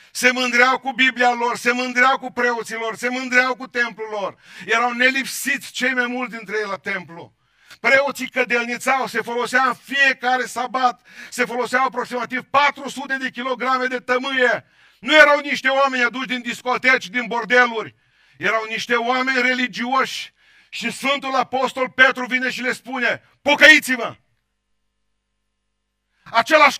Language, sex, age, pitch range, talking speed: Romanian, male, 40-59, 240-270 Hz, 140 wpm